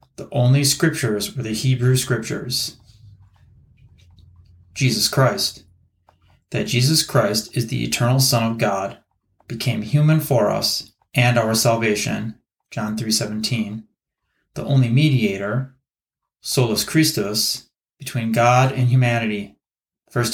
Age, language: 30-49, English